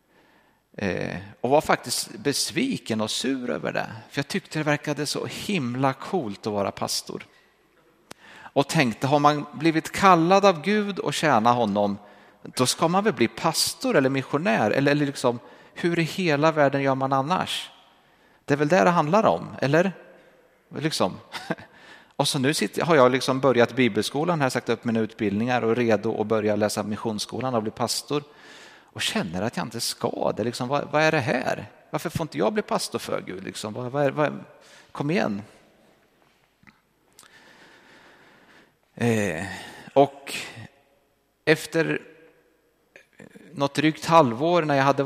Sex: male